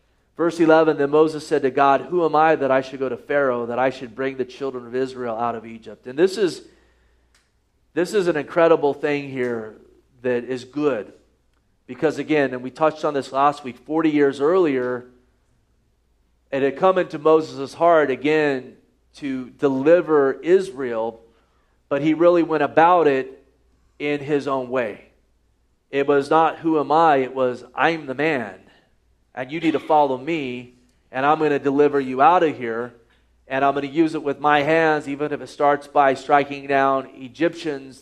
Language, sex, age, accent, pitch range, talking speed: English, male, 40-59, American, 125-150 Hz, 180 wpm